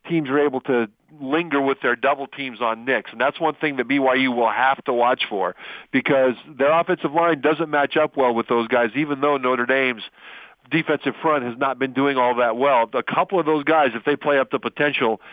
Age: 50-69